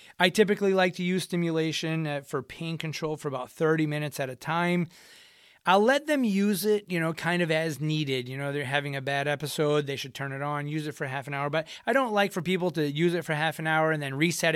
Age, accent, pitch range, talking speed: 30-49, American, 145-175 Hz, 250 wpm